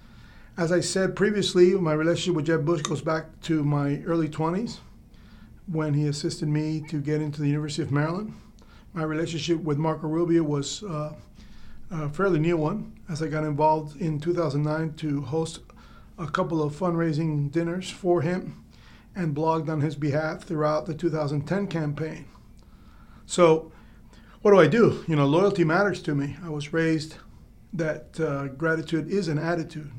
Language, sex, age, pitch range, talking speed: English, male, 40-59, 155-180 Hz, 160 wpm